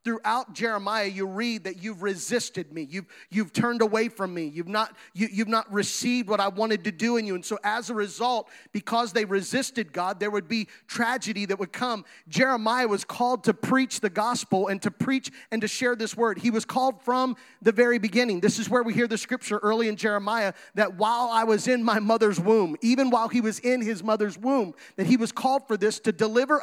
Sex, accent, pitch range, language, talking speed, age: male, American, 215-260 Hz, English, 225 wpm, 30-49